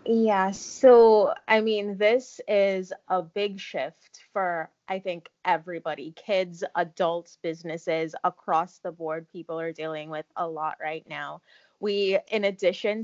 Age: 20-39